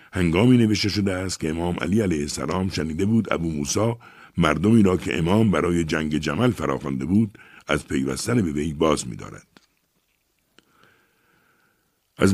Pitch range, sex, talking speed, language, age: 85-115 Hz, male, 140 wpm, Persian, 60-79